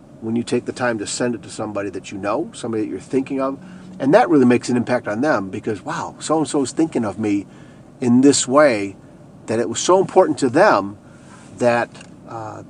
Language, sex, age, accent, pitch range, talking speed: English, male, 50-69, American, 110-145 Hz, 215 wpm